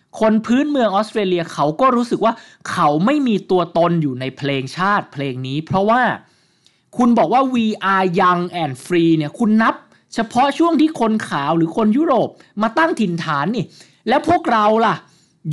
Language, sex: Thai, male